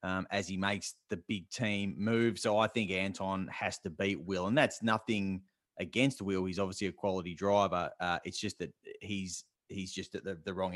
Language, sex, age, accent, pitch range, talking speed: English, male, 30-49, Australian, 95-115 Hz, 205 wpm